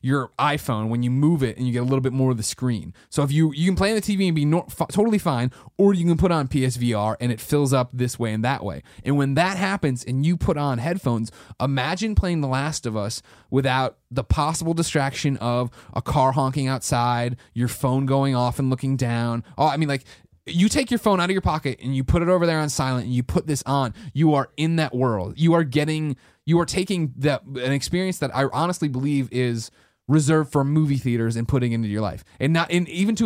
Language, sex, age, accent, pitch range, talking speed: English, male, 20-39, American, 120-155 Hz, 245 wpm